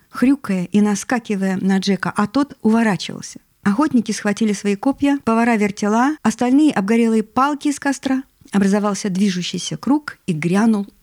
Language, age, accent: Russian, 50-69, native